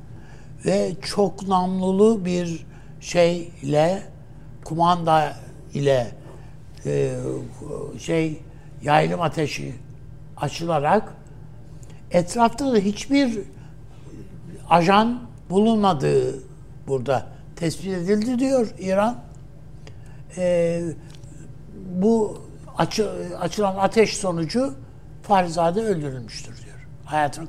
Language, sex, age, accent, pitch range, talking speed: Turkish, male, 60-79, native, 140-190 Hz, 70 wpm